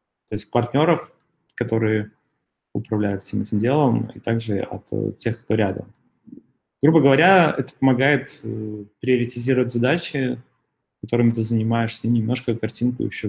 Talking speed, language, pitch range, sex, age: 120 wpm, Russian, 110-130 Hz, male, 30-49